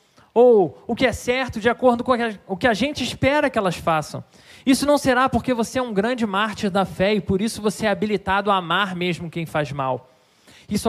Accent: Brazilian